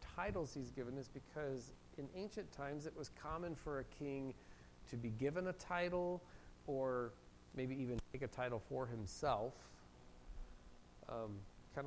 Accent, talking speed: American, 140 wpm